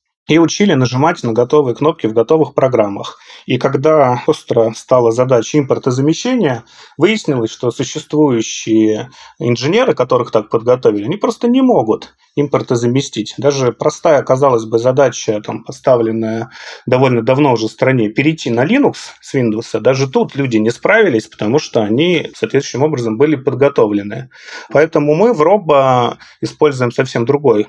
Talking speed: 135 wpm